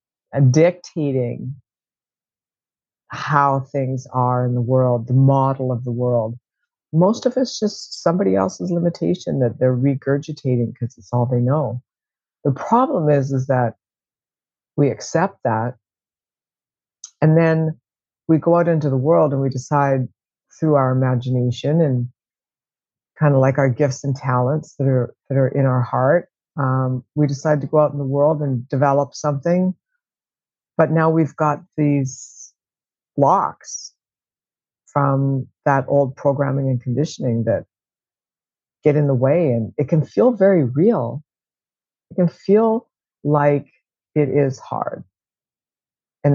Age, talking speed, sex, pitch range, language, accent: 60-79, 140 wpm, female, 125-150 Hz, English, American